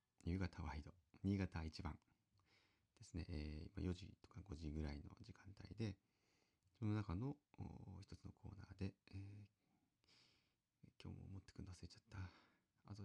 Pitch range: 85-105 Hz